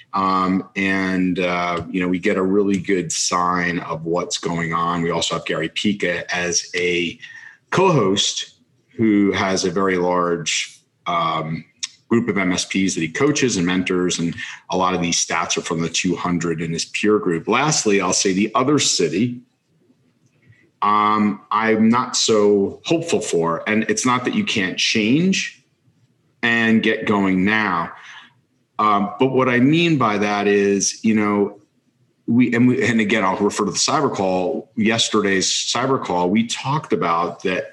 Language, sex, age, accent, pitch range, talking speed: English, male, 40-59, American, 90-115 Hz, 160 wpm